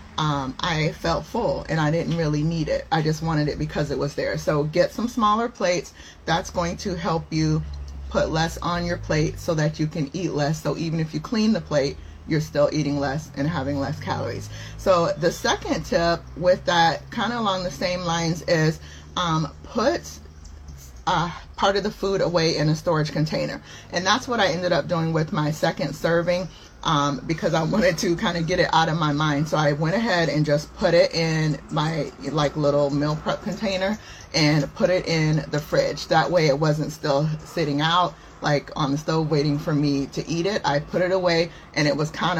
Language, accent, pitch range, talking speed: English, American, 145-175 Hz, 210 wpm